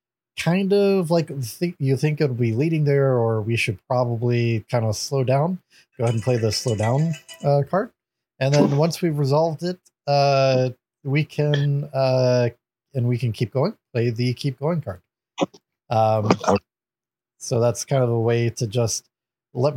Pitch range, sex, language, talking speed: 115-145 Hz, male, English, 175 wpm